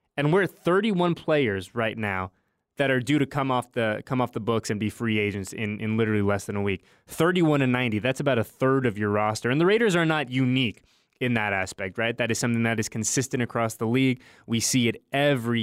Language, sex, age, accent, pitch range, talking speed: English, male, 20-39, American, 110-140 Hz, 225 wpm